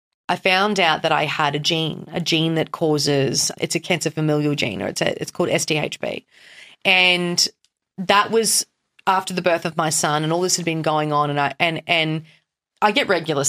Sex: female